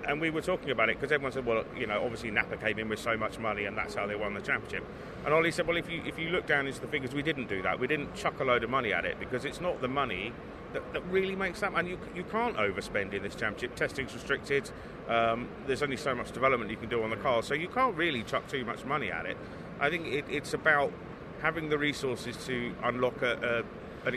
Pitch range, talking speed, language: 110-150 Hz, 270 wpm, English